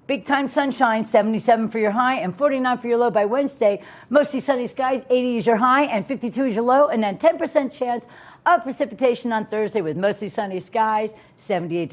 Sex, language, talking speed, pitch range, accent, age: female, English, 195 wpm, 210-255 Hz, American, 50-69